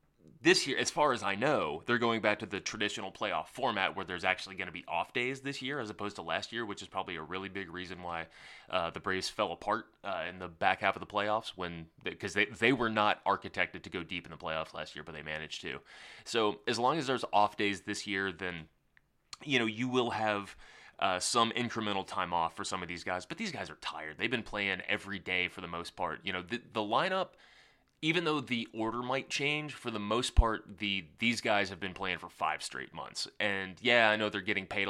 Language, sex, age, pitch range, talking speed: English, male, 20-39, 90-115 Hz, 245 wpm